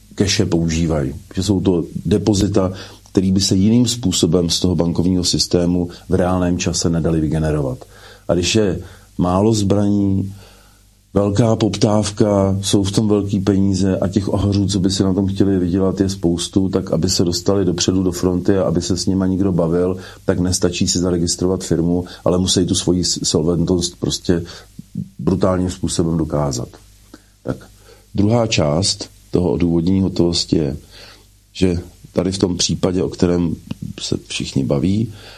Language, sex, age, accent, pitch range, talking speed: Czech, male, 40-59, native, 90-100 Hz, 150 wpm